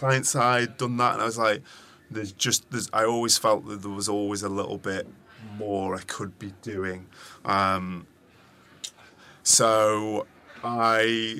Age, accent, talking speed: 20-39, British, 155 wpm